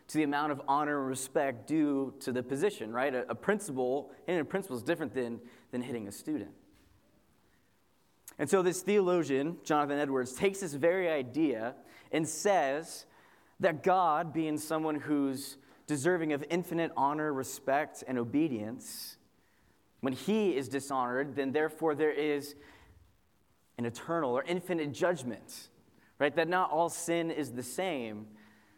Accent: American